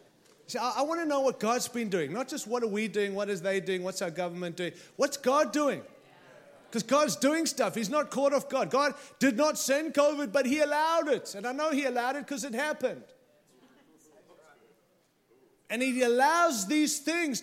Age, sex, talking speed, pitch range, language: 30-49, male, 200 wpm, 240-300 Hz, English